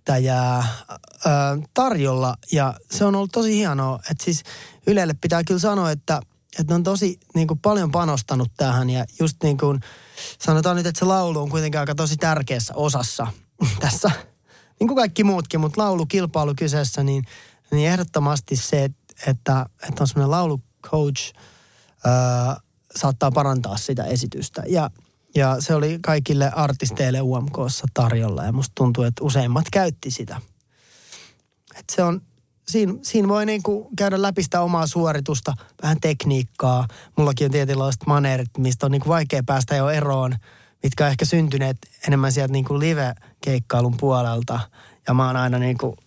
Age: 20-39